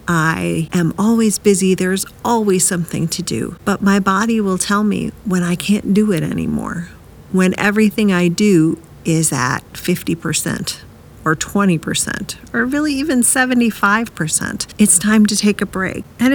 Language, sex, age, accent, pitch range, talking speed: English, female, 40-59, American, 170-220 Hz, 150 wpm